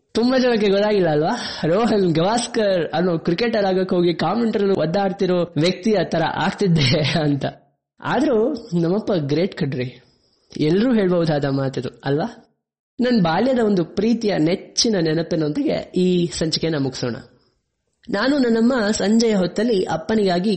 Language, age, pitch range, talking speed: Kannada, 20-39, 160-220 Hz, 115 wpm